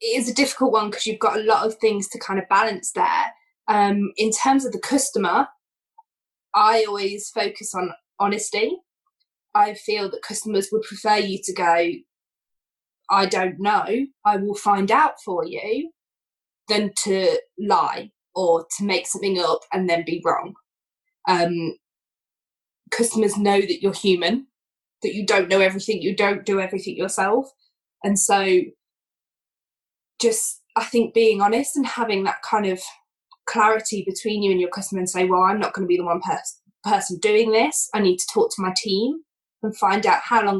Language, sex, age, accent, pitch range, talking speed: English, female, 20-39, British, 190-260 Hz, 175 wpm